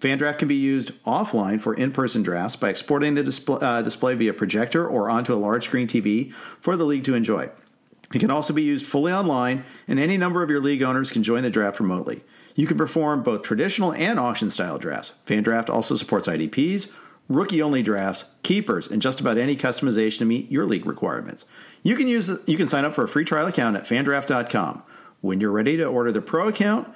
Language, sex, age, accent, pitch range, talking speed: English, male, 50-69, American, 120-165 Hz, 205 wpm